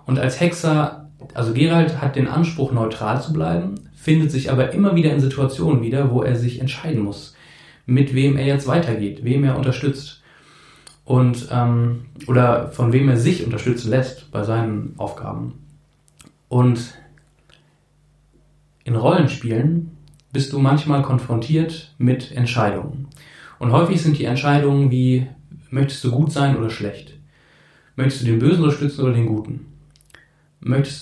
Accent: German